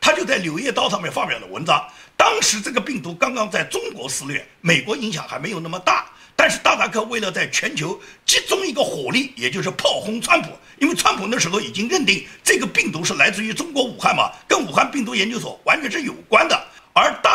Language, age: Chinese, 50-69